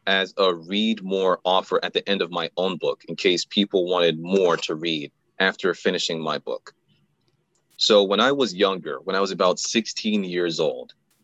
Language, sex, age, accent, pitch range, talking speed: English, male, 30-49, American, 90-115 Hz, 185 wpm